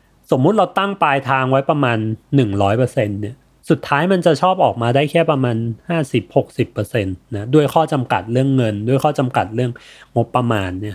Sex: male